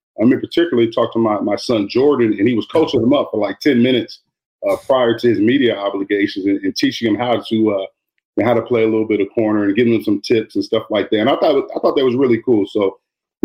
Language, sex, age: English, male, 40-59